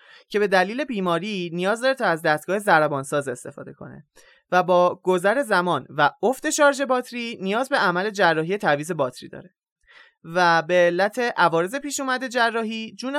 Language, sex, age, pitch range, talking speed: Persian, male, 20-39, 185-265 Hz, 160 wpm